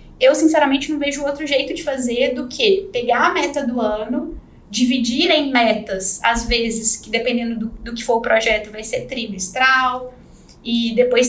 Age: 10-29